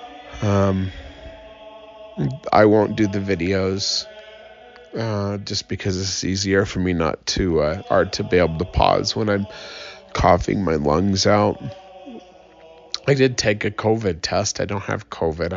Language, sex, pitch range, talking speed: English, male, 95-120 Hz, 145 wpm